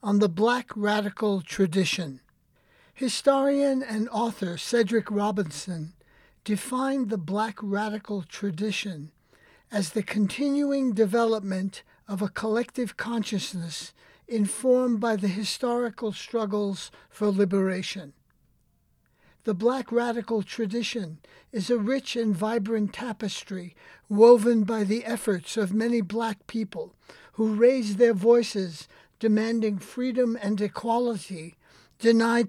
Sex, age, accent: male, 60-79, American